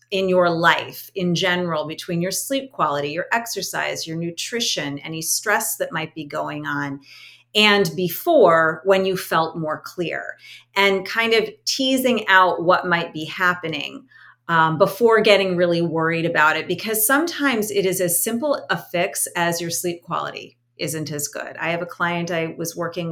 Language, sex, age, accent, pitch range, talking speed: English, female, 30-49, American, 160-205 Hz, 170 wpm